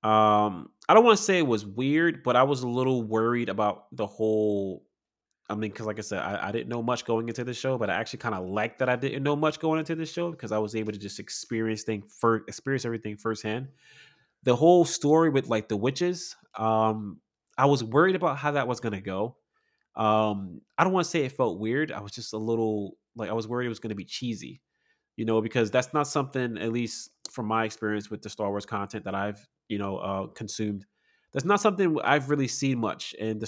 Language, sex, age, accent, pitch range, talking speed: English, male, 20-39, American, 105-130 Hz, 235 wpm